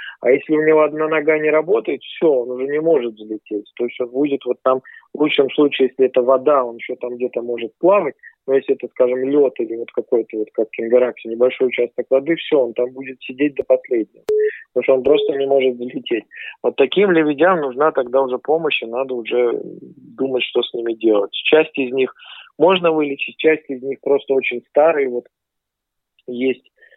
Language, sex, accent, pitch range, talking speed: Russian, male, native, 125-185 Hz, 195 wpm